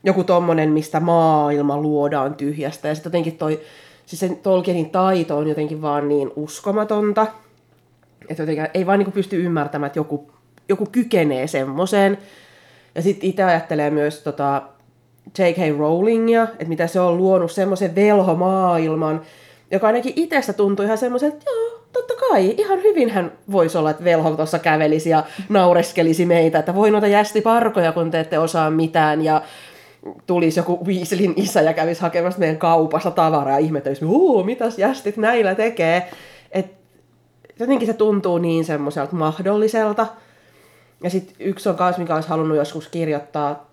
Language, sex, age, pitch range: Finnish, female, 30-49, 155-200 Hz